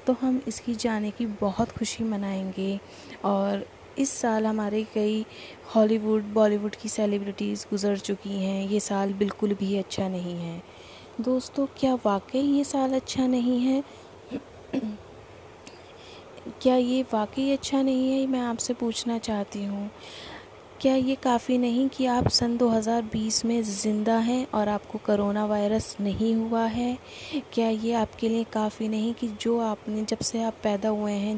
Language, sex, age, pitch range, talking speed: Hindi, female, 20-39, 200-225 Hz, 150 wpm